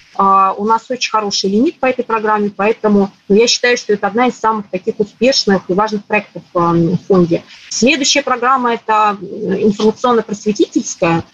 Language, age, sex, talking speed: Russian, 30-49, female, 145 wpm